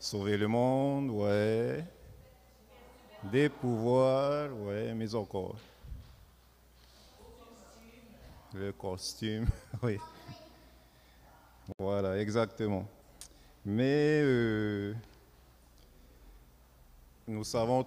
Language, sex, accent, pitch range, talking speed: French, male, French, 100-130 Hz, 60 wpm